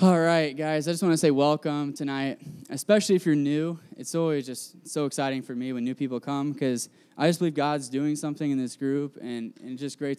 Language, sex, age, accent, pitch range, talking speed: English, male, 10-29, American, 125-150 Hz, 235 wpm